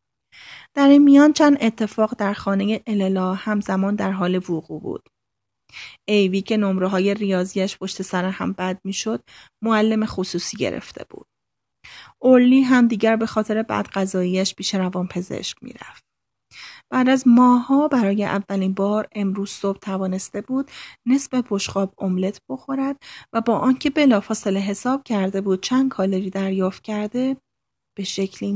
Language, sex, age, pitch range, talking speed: Persian, female, 30-49, 190-235 Hz, 140 wpm